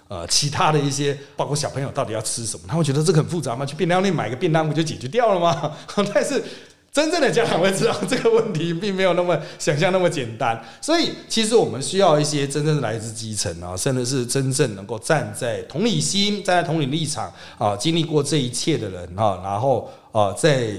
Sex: male